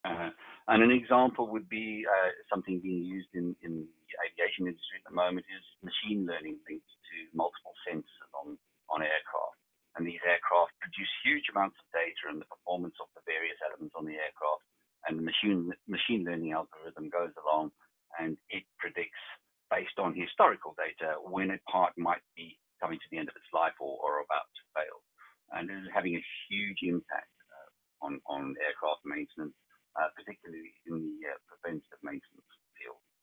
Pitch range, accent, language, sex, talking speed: 80-100 Hz, British, English, male, 175 wpm